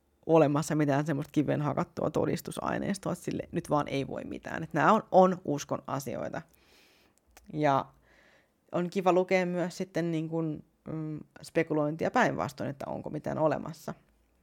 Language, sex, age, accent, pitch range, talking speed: Finnish, female, 30-49, native, 135-180 Hz, 135 wpm